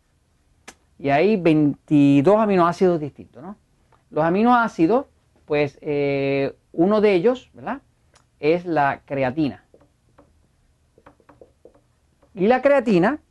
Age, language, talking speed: 40-59, Spanish, 90 wpm